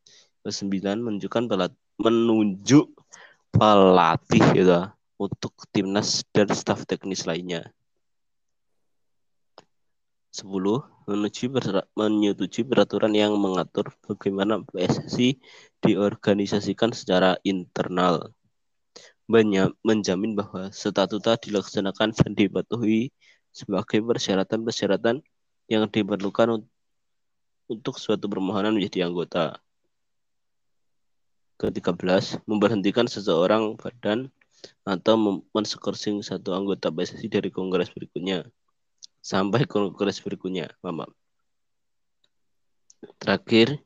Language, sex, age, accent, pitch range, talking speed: Indonesian, male, 20-39, native, 95-110 Hz, 80 wpm